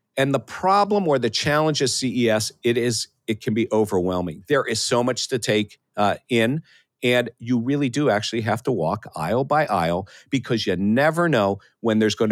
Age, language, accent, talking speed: 50-69, English, American, 195 wpm